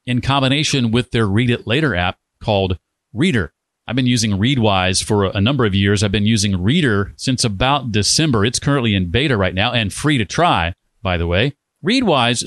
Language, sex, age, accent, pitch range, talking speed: English, male, 40-59, American, 105-135 Hz, 190 wpm